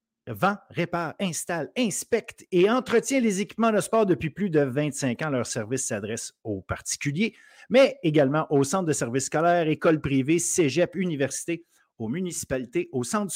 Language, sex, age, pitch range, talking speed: French, male, 50-69, 140-190 Hz, 155 wpm